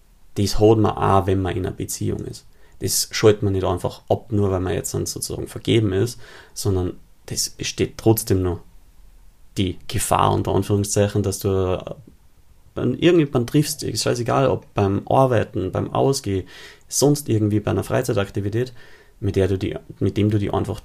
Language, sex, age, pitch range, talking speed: German, male, 30-49, 95-120 Hz, 165 wpm